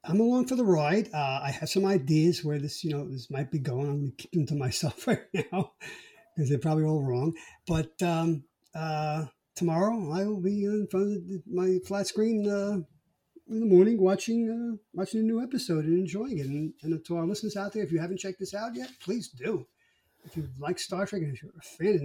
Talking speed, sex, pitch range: 235 wpm, male, 145-190 Hz